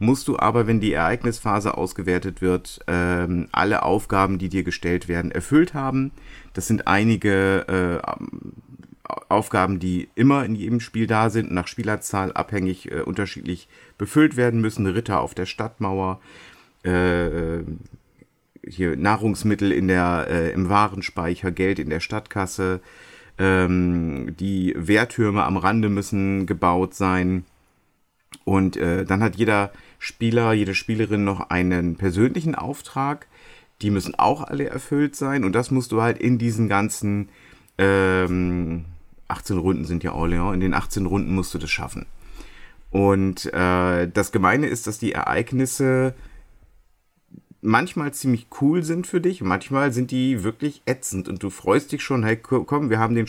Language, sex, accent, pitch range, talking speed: German, male, German, 90-115 Hz, 150 wpm